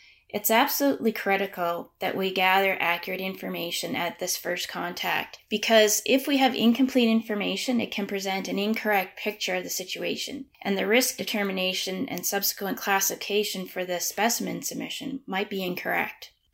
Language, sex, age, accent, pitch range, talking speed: English, female, 20-39, American, 185-220 Hz, 150 wpm